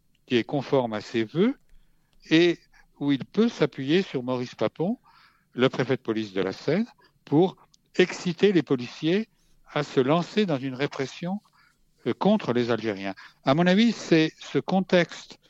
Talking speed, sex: 160 wpm, male